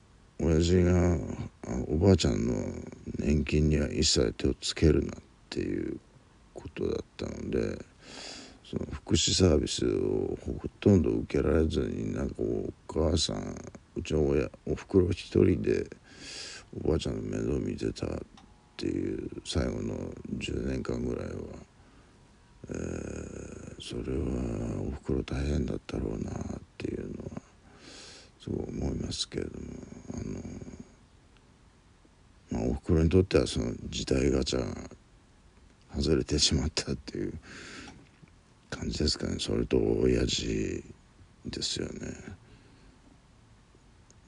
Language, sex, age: Japanese, male, 60-79